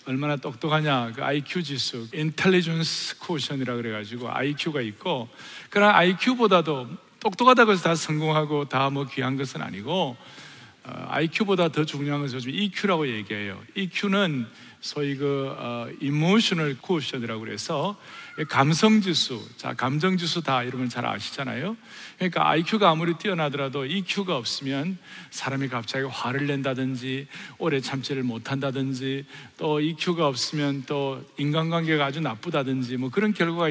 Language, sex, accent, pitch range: Korean, male, native, 135-185 Hz